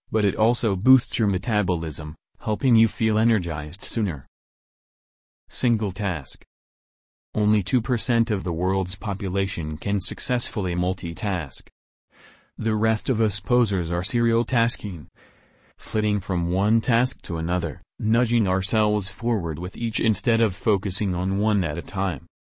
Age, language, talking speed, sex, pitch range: 40-59, English, 130 wpm, male, 95-115 Hz